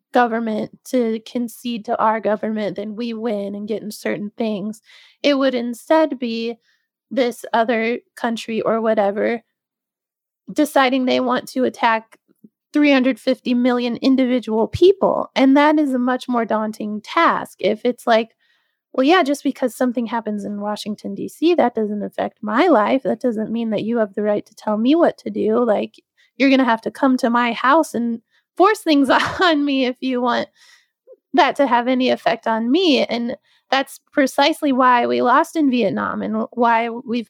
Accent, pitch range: American, 225-270 Hz